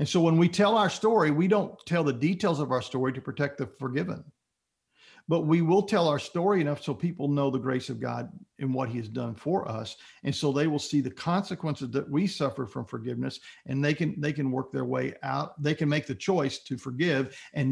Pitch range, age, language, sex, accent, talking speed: 130-160 Hz, 50-69, English, male, American, 235 wpm